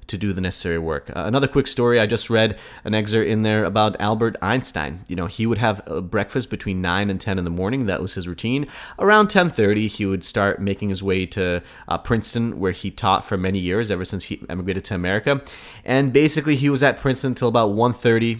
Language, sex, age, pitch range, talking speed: English, male, 30-49, 95-115 Hz, 225 wpm